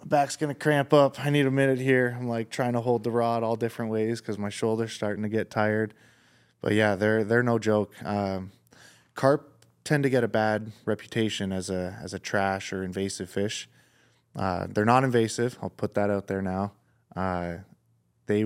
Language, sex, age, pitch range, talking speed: English, male, 20-39, 100-120 Hz, 200 wpm